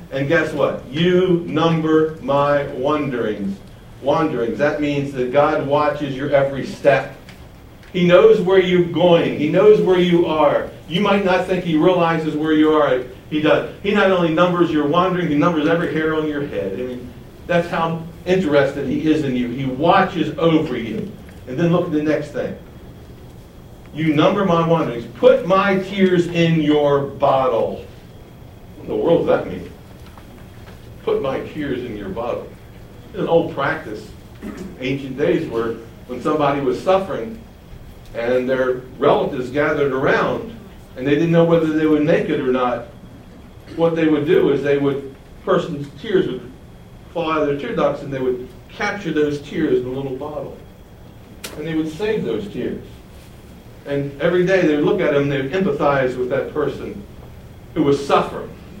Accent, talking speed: American, 170 wpm